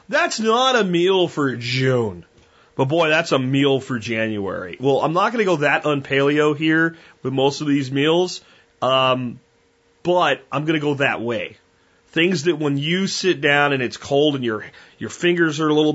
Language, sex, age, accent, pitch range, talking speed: English, male, 30-49, American, 135-170 Hz, 215 wpm